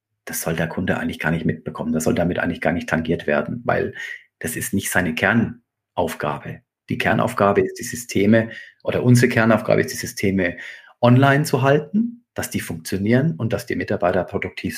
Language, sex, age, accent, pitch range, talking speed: German, male, 40-59, German, 105-125 Hz, 180 wpm